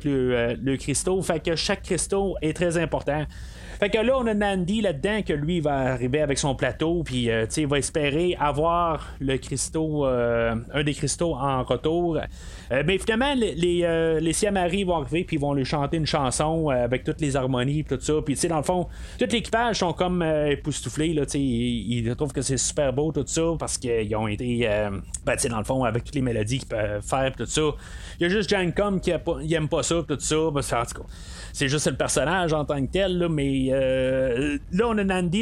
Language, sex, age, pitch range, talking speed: French, male, 30-49, 135-180 Hz, 240 wpm